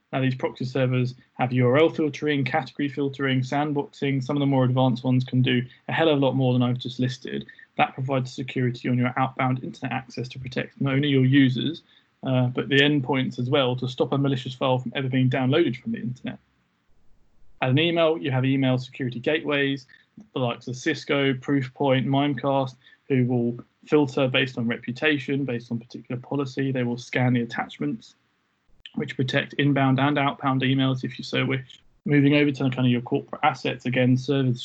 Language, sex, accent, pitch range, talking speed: English, male, British, 125-140 Hz, 190 wpm